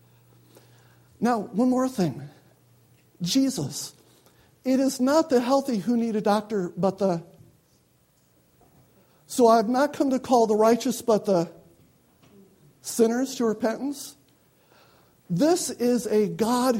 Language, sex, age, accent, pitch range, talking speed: English, male, 60-79, American, 175-255 Hz, 120 wpm